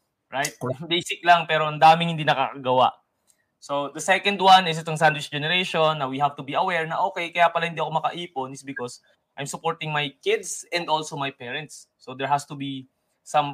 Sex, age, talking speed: male, 20-39, 200 wpm